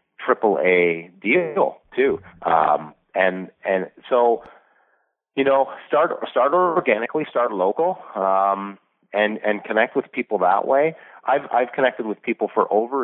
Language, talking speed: English, 140 wpm